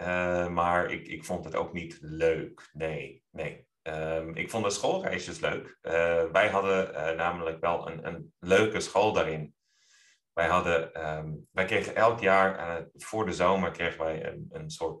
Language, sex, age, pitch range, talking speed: Dutch, male, 30-49, 80-90 Hz, 175 wpm